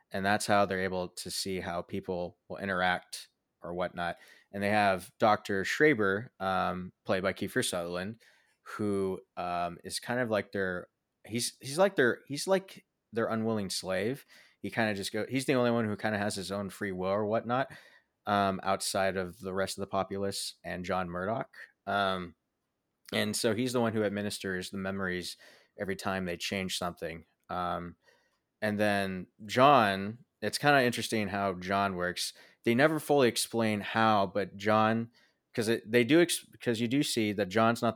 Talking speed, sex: 180 wpm, male